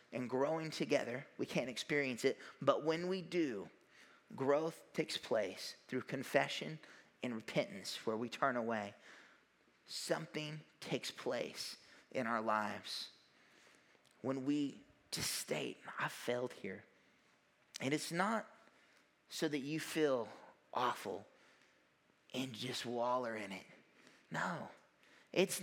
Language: English